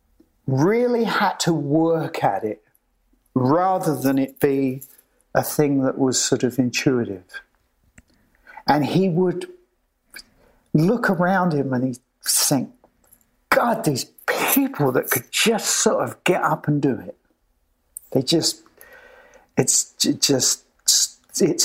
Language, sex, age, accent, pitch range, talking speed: English, male, 50-69, British, 125-170 Hz, 120 wpm